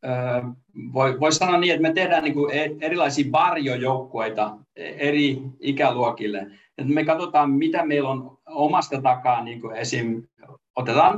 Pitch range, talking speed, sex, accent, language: 125-150 Hz, 95 wpm, male, native, Finnish